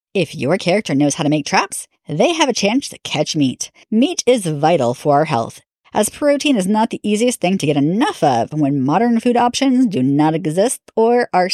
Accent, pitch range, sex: American, 160-265 Hz, female